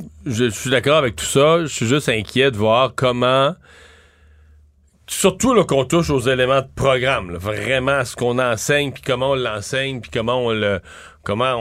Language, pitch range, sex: French, 110-140 Hz, male